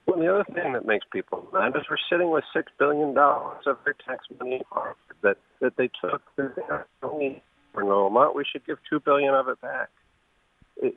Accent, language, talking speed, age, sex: American, English, 190 wpm, 50-69, male